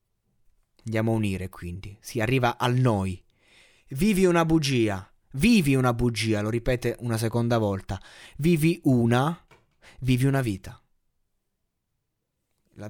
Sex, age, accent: male, 20-39, native